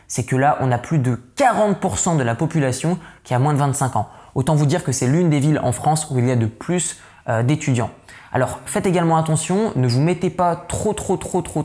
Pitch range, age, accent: 130-165 Hz, 20-39, French